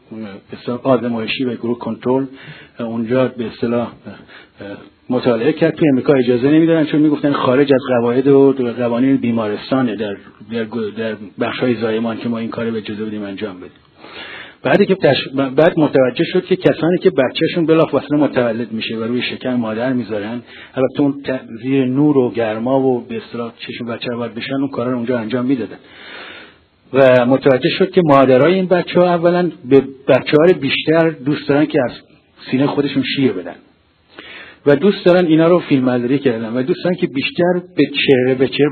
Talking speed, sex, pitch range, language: 165 wpm, male, 125-155 Hz, Persian